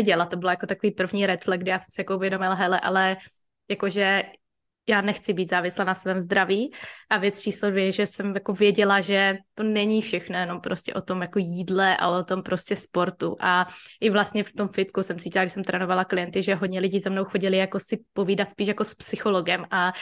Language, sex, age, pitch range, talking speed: Slovak, female, 20-39, 190-205 Hz, 215 wpm